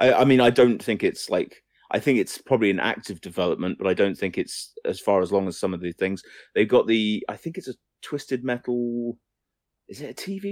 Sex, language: male, English